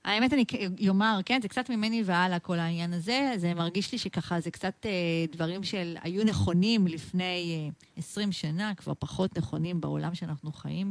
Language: Hebrew